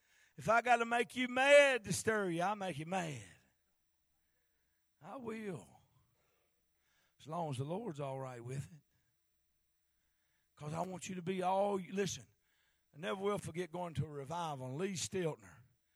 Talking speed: 165 wpm